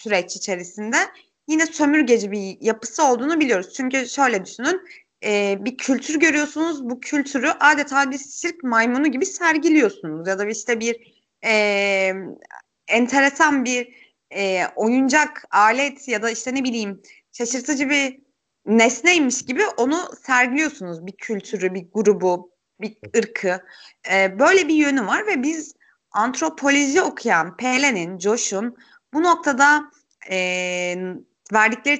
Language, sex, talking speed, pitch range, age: Turkish, female, 120 wpm, 200-285 Hz, 30-49